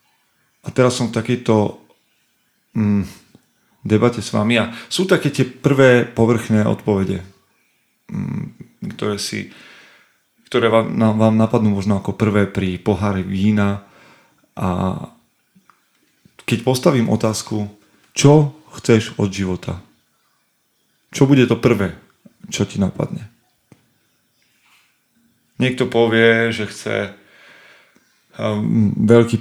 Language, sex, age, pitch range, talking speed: Slovak, male, 30-49, 105-120 Hz, 105 wpm